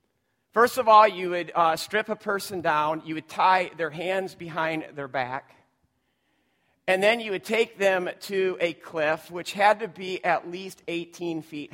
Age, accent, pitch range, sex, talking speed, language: 50-69, American, 175-215 Hz, male, 180 wpm, English